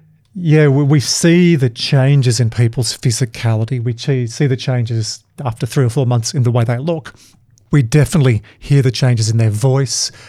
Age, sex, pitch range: 40-59, male, 120-140 Hz